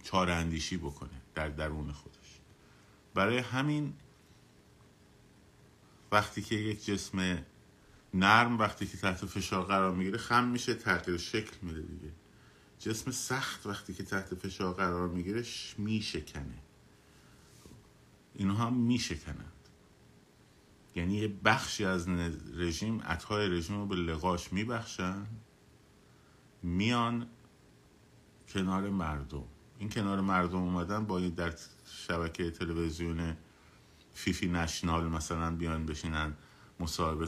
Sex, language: male, Persian